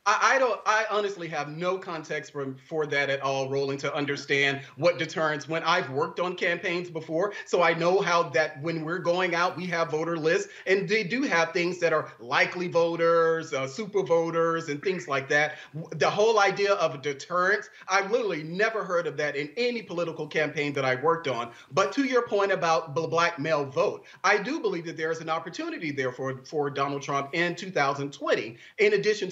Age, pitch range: 30-49, 155-205 Hz